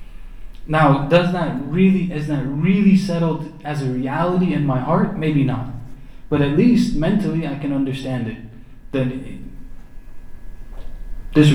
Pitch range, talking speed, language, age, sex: 120-145 Hz, 140 wpm, English, 20-39, male